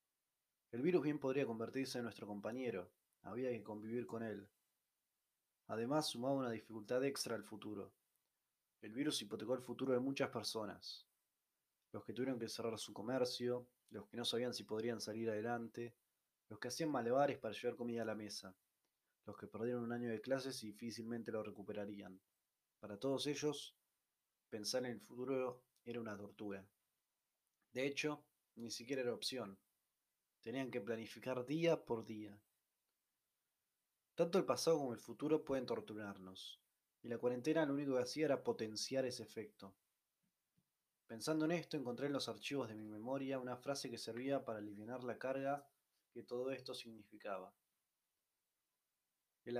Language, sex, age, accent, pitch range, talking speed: Spanish, male, 20-39, Argentinian, 110-135 Hz, 155 wpm